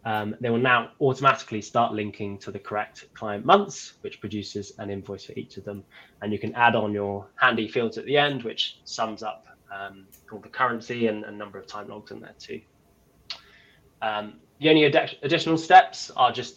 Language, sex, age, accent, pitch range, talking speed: English, male, 20-39, British, 110-135 Hz, 200 wpm